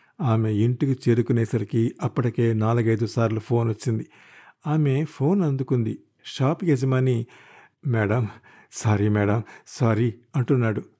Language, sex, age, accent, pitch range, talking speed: Telugu, male, 50-69, native, 115-155 Hz, 100 wpm